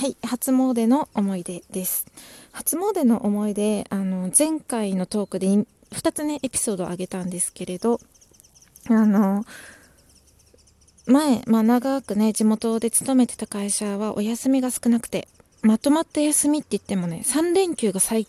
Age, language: 20-39, Japanese